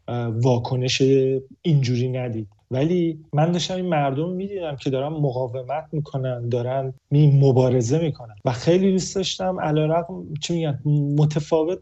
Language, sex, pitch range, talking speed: Persian, male, 130-160 Hz, 120 wpm